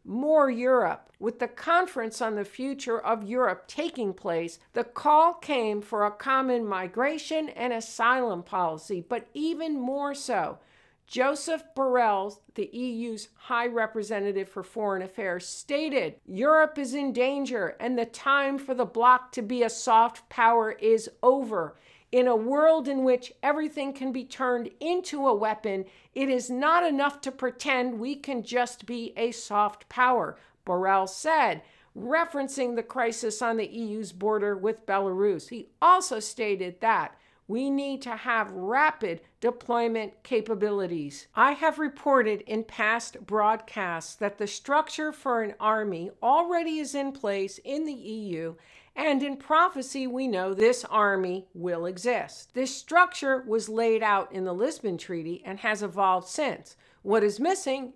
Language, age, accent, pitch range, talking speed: English, 50-69, American, 210-275 Hz, 150 wpm